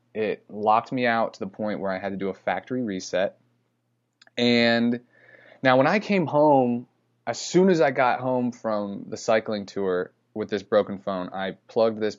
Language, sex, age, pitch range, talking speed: English, male, 20-39, 100-120 Hz, 185 wpm